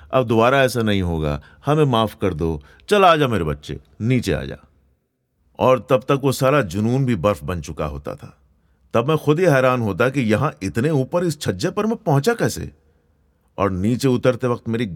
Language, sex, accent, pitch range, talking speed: Hindi, male, native, 80-115 Hz, 195 wpm